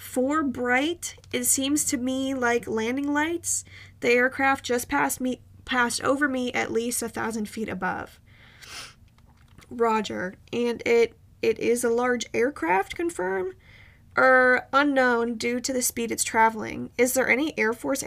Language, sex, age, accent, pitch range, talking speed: English, female, 20-39, American, 200-265 Hz, 150 wpm